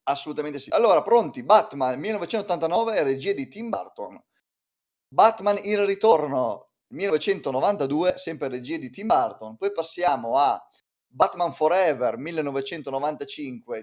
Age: 30-49